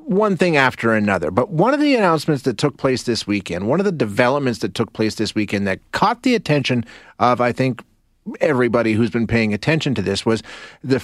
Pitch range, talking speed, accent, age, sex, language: 115-155 Hz, 210 wpm, American, 30-49, male, English